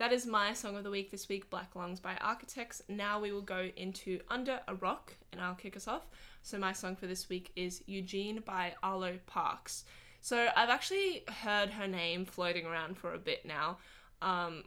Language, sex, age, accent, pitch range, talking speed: English, female, 10-29, Australian, 180-215 Hz, 205 wpm